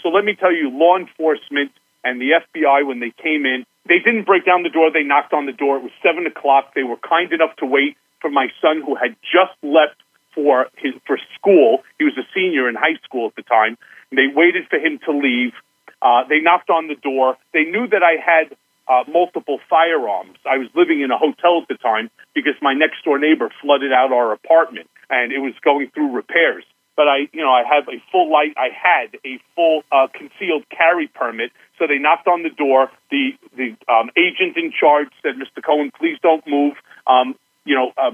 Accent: American